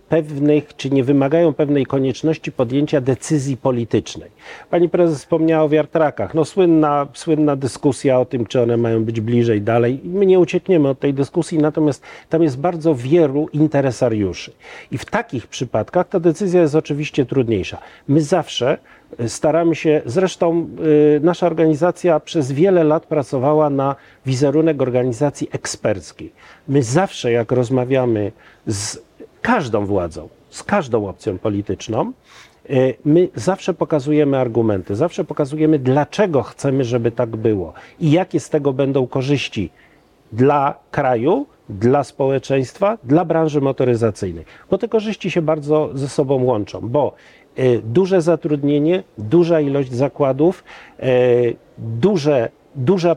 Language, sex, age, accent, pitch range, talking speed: Polish, male, 40-59, native, 130-165 Hz, 130 wpm